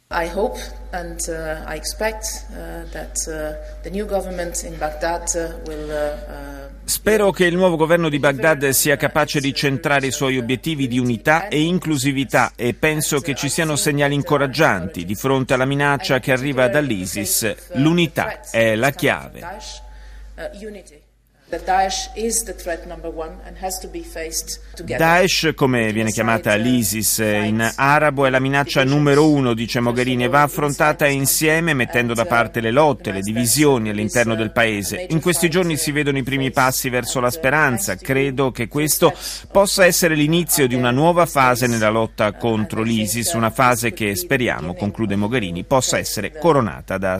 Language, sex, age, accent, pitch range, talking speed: Italian, male, 30-49, native, 120-160 Hz, 125 wpm